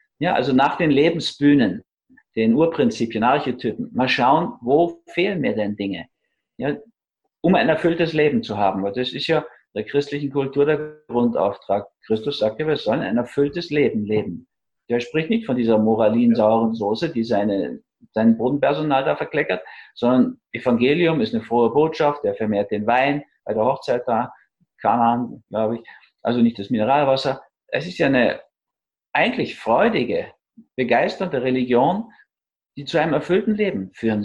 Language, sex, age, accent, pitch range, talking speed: German, male, 50-69, German, 115-170 Hz, 155 wpm